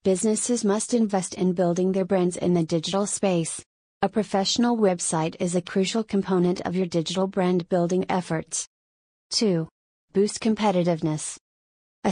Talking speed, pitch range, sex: 135 wpm, 175-200 Hz, female